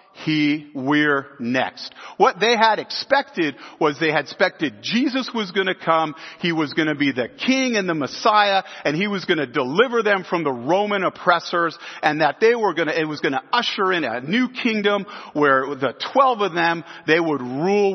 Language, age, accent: English, 50-69, American